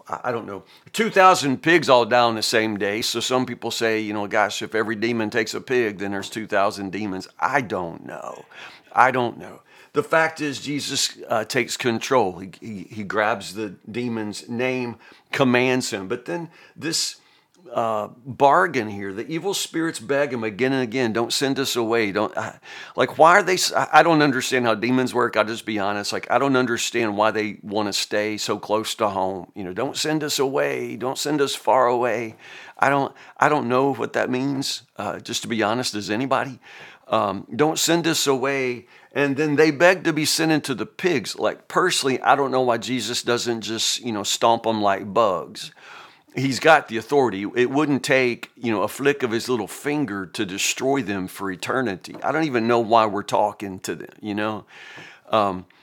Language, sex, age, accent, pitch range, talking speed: English, male, 50-69, American, 105-140 Hz, 200 wpm